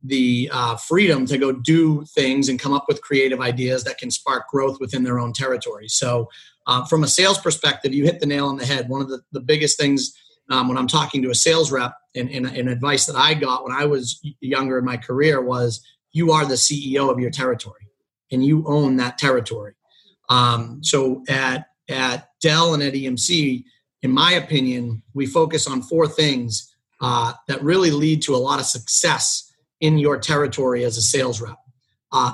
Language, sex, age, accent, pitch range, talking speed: English, male, 30-49, American, 125-150 Hz, 200 wpm